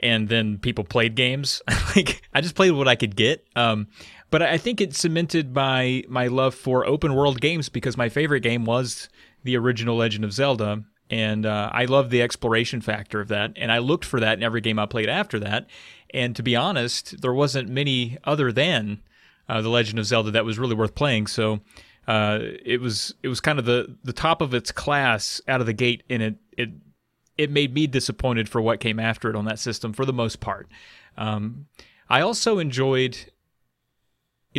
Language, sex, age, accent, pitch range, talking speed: English, male, 30-49, American, 110-130 Hz, 205 wpm